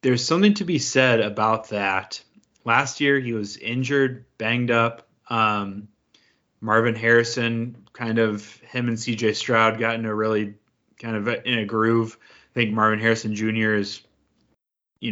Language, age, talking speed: English, 20-39, 155 wpm